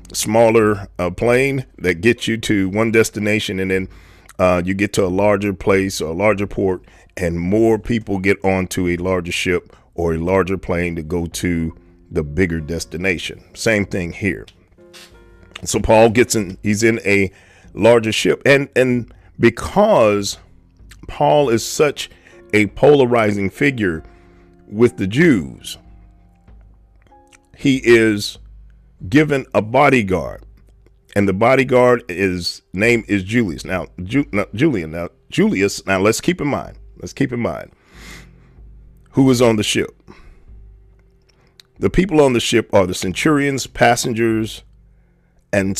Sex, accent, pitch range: male, American, 90-115 Hz